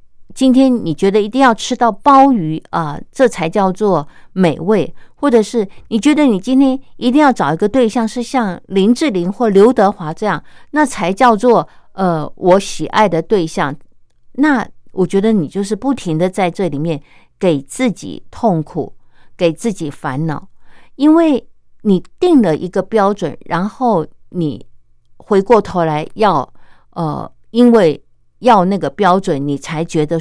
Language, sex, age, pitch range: Chinese, female, 50-69, 165-235 Hz